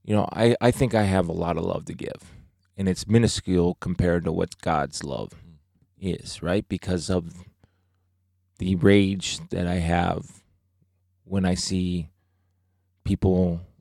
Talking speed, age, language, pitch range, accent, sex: 150 wpm, 20-39, English, 90-100 Hz, American, male